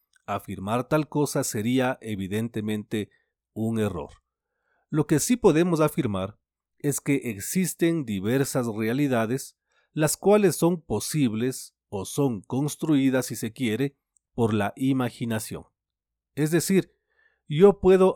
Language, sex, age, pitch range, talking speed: Spanish, male, 40-59, 105-140 Hz, 110 wpm